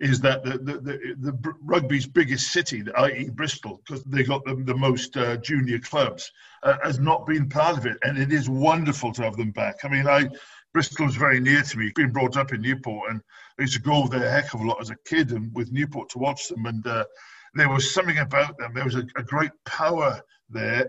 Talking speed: 240 wpm